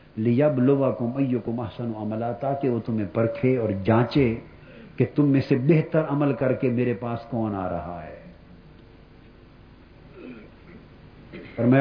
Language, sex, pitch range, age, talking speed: Urdu, male, 120-175 Hz, 50-69, 130 wpm